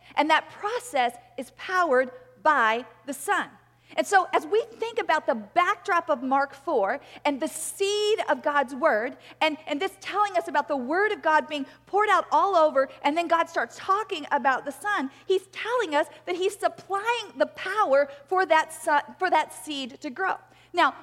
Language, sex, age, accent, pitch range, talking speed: English, female, 40-59, American, 280-365 Hz, 180 wpm